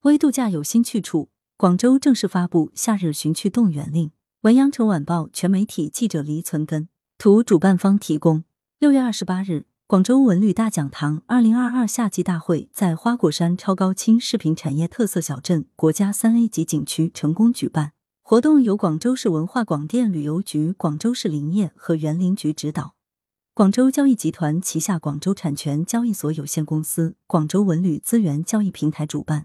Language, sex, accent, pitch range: Chinese, female, native, 155-225 Hz